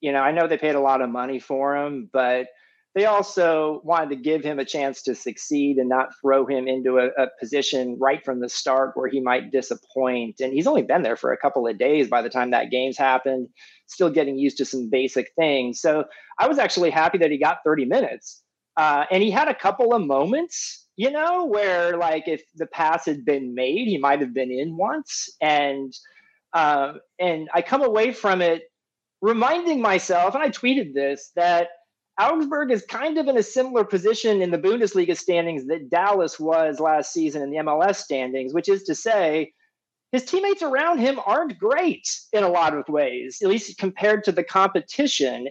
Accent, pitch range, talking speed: American, 140-225 Hz, 200 wpm